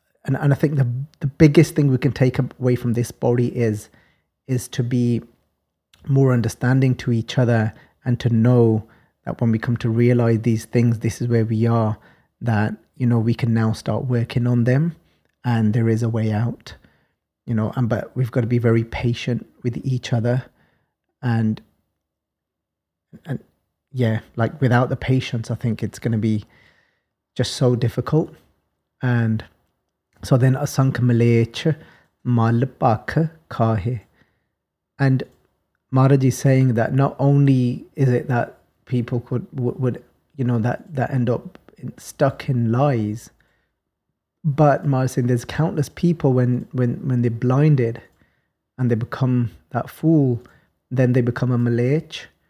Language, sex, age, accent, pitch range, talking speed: English, male, 30-49, British, 115-130 Hz, 155 wpm